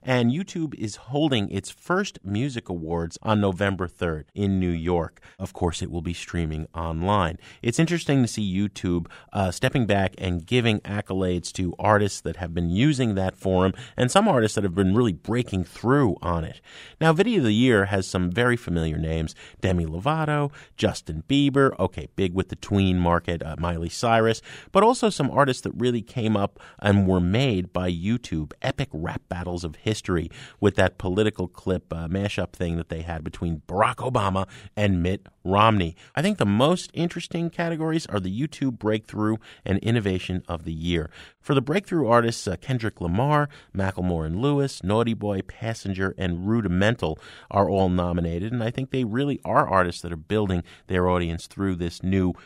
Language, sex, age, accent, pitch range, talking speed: English, male, 30-49, American, 90-125 Hz, 180 wpm